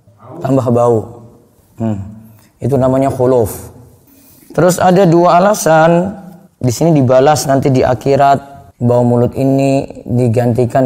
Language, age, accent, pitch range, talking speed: Indonesian, 20-39, native, 120-155 Hz, 110 wpm